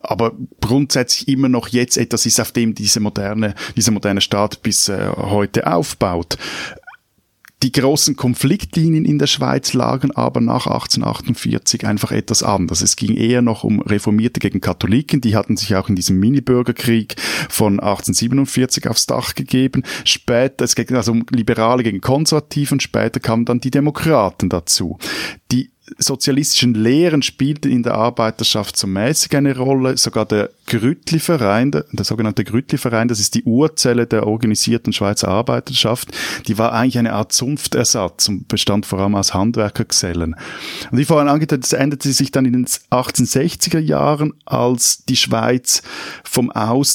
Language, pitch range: German, 105-135 Hz